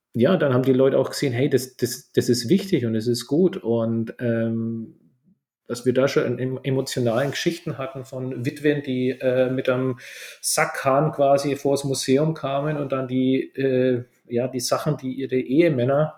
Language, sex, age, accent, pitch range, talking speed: German, male, 40-59, German, 115-135 Hz, 175 wpm